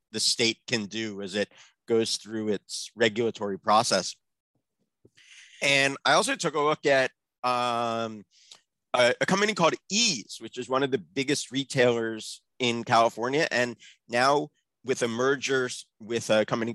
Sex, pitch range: male, 110-135 Hz